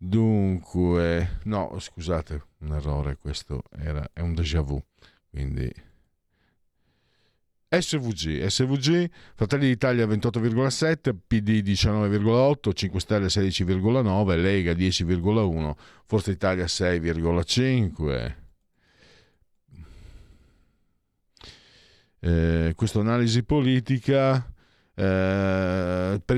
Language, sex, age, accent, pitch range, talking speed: Italian, male, 50-69, native, 85-120 Hz, 70 wpm